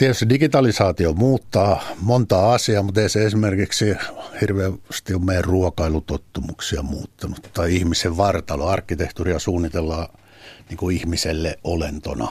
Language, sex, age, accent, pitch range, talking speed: Finnish, male, 60-79, native, 80-105 Hz, 110 wpm